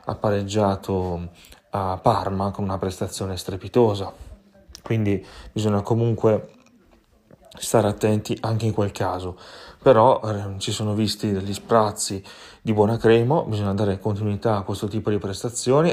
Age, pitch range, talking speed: 30-49, 95-110 Hz, 130 wpm